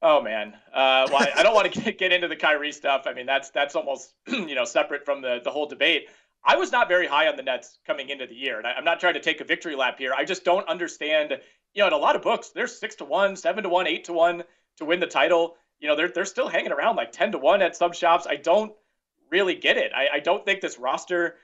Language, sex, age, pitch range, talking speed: English, male, 30-49, 145-200 Hz, 270 wpm